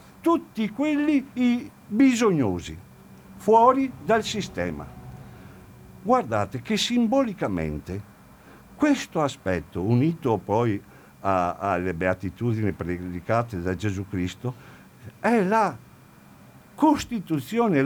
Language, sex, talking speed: Italian, male, 75 wpm